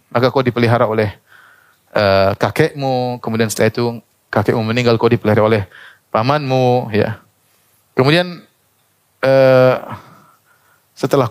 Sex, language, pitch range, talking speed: male, Indonesian, 120-170 Hz, 100 wpm